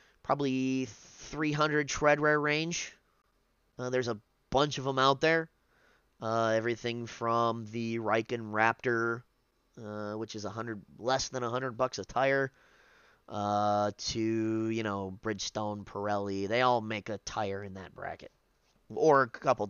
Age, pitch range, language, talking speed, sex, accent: 20-39, 110-140 Hz, English, 145 wpm, male, American